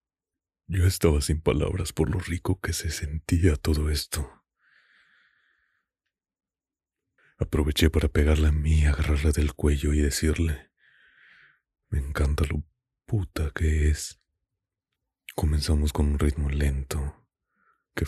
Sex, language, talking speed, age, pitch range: male, Spanish, 115 wpm, 30-49, 75-80 Hz